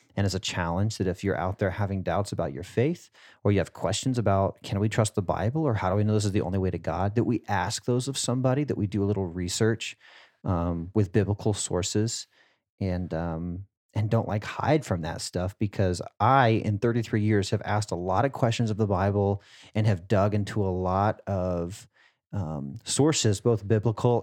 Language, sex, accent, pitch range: English, male, American, 95-110 Hz